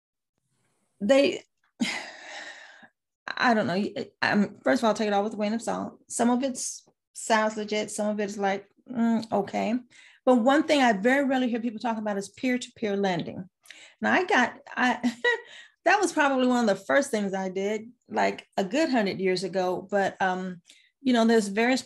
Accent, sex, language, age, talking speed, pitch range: American, female, English, 30-49, 185 wpm, 195-240 Hz